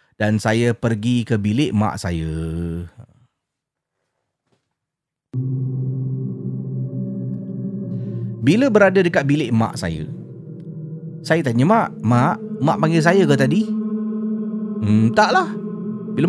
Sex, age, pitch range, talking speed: male, 30-49, 115-180 Hz, 90 wpm